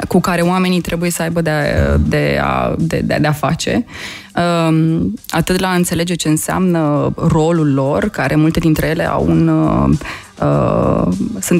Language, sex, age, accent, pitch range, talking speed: Romanian, female, 20-39, native, 145-175 Hz, 130 wpm